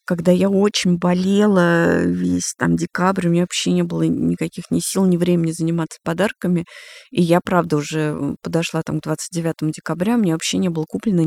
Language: Russian